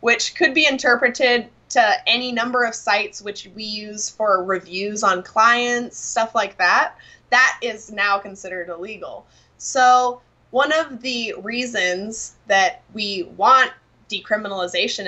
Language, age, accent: English, 20-39, American